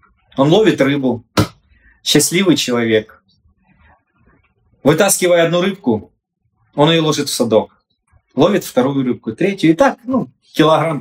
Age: 20-39